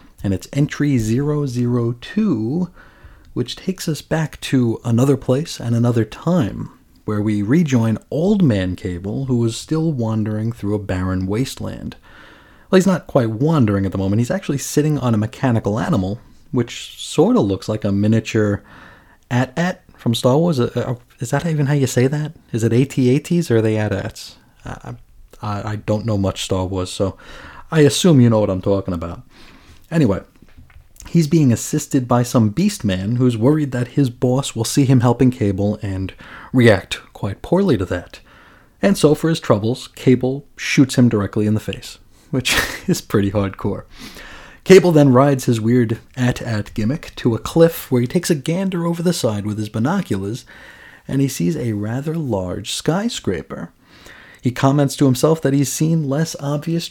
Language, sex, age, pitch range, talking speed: English, male, 30-49, 105-145 Hz, 170 wpm